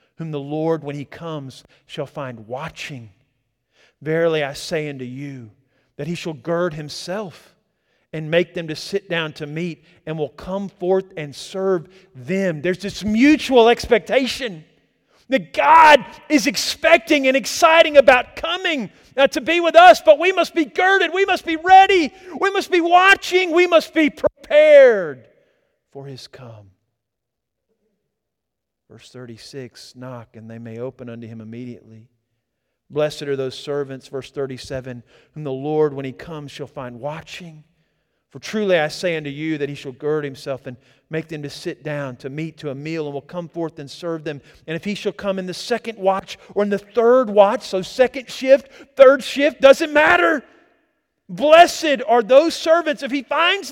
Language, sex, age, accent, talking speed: English, male, 40-59, American, 170 wpm